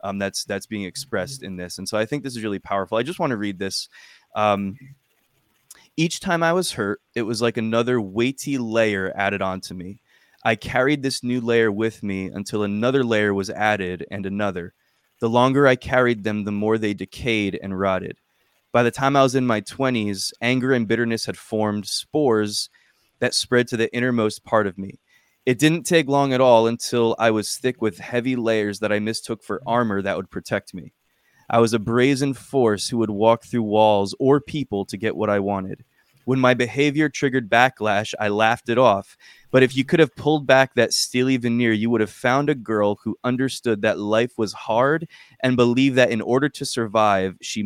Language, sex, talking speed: English, male, 205 wpm